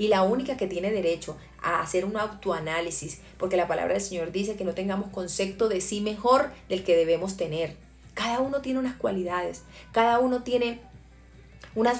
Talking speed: 180 wpm